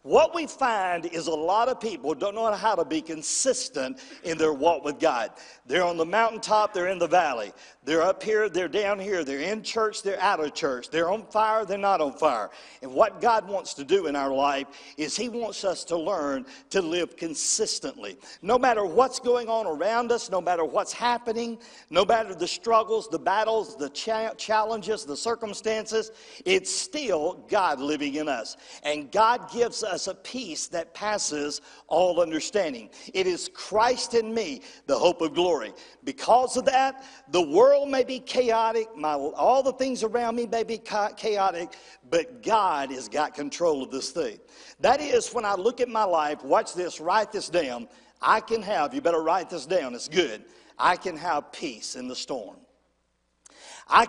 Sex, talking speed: male, 185 wpm